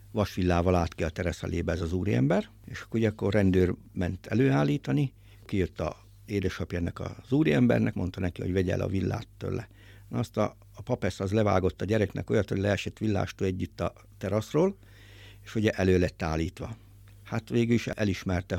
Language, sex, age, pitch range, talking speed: Hungarian, male, 60-79, 95-110 Hz, 165 wpm